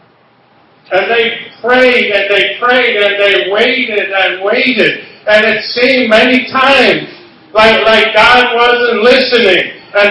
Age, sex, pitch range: 50-69, male, 230-270 Hz